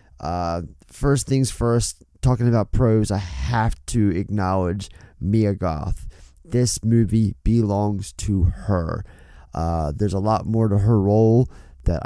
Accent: American